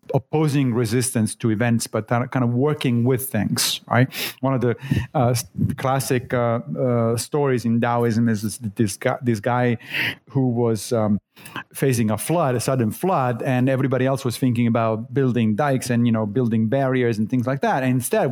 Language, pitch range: English, 120-150 Hz